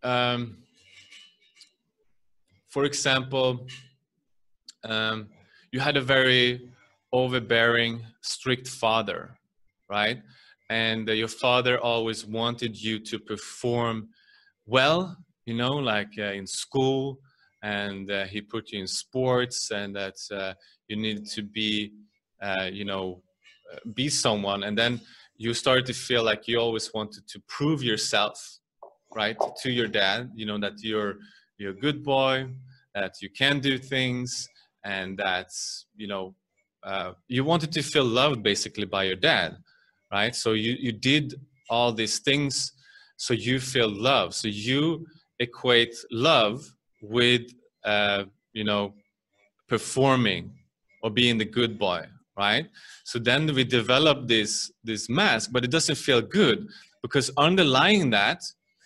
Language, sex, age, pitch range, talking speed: English, male, 20-39, 105-130 Hz, 135 wpm